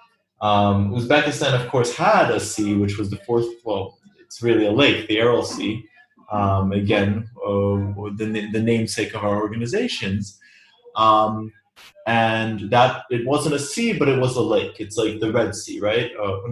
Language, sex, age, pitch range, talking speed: English, male, 20-39, 105-125 Hz, 180 wpm